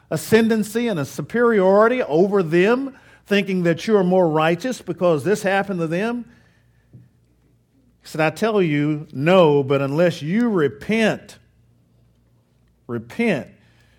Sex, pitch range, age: male, 145-210 Hz, 50-69